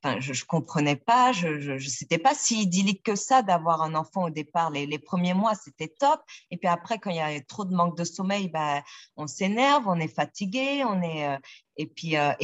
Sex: female